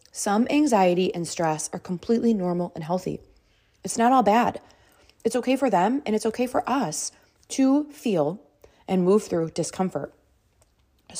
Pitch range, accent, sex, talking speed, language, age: 165-220 Hz, American, female, 155 wpm, English, 20-39